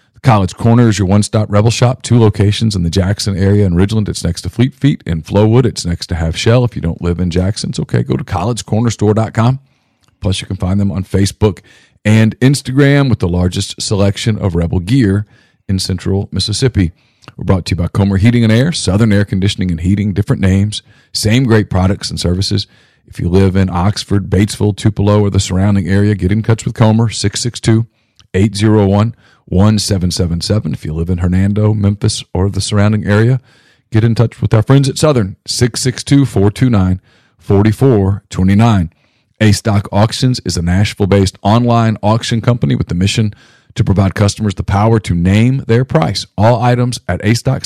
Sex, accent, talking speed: male, American, 180 wpm